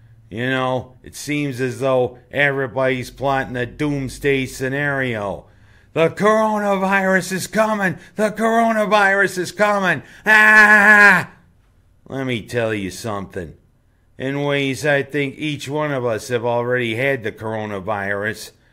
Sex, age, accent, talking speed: male, 50-69, American, 120 wpm